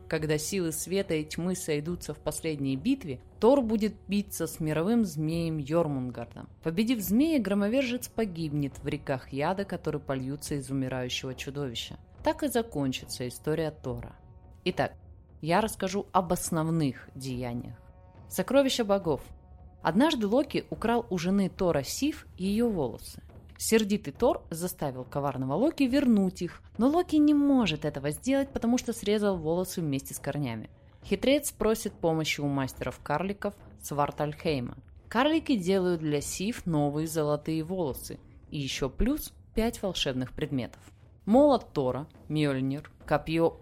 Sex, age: female, 20-39